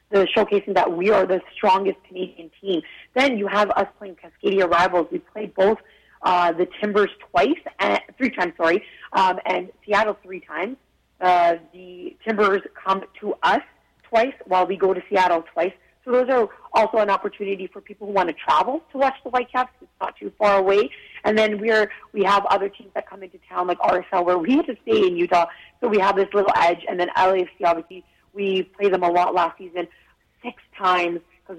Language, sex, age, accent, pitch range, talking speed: English, female, 30-49, American, 175-215 Hz, 205 wpm